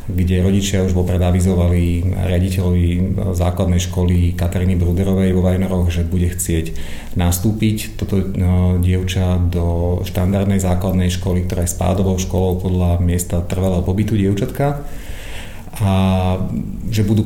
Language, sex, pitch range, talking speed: Slovak, male, 90-100 Hz, 120 wpm